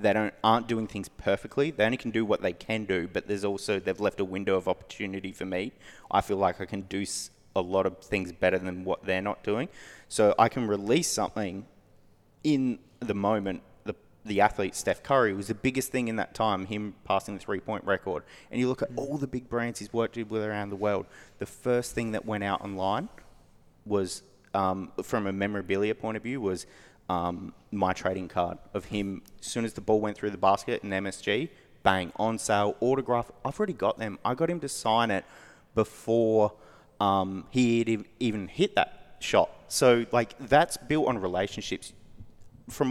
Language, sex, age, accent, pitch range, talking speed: English, male, 30-49, Australian, 95-120 Hz, 195 wpm